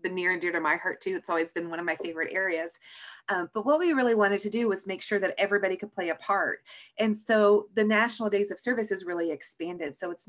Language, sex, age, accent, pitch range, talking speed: English, female, 30-49, American, 170-220 Hz, 255 wpm